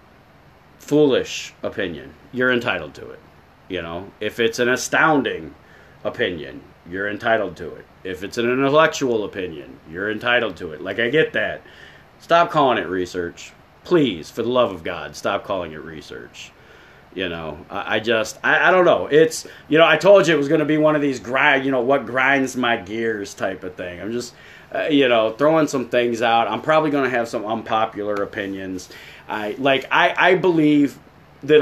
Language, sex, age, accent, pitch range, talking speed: English, male, 30-49, American, 115-155 Hz, 190 wpm